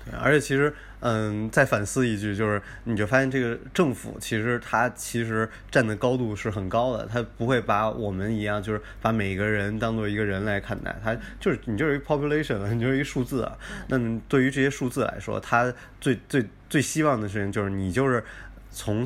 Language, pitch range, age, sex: Chinese, 100-125 Hz, 20-39, male